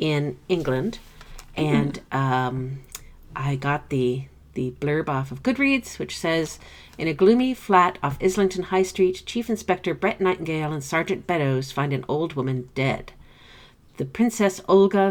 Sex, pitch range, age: female, 135-185 Hz, 50-69